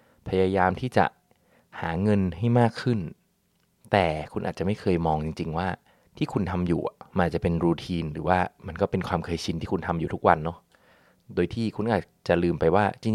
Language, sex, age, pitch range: Thai, male, 20-39, 90-115 Hz